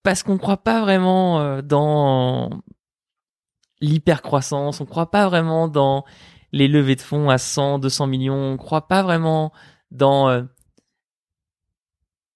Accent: French